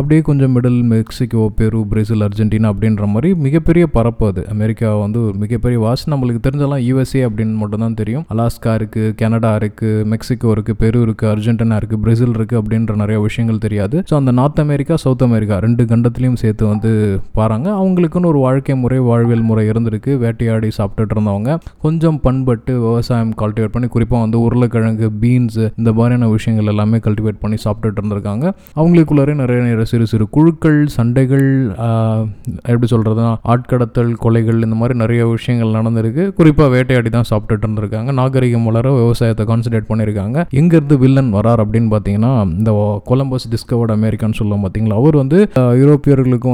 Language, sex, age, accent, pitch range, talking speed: Tamil, male, 20-39, native, 110-125 Hz, 95 wpm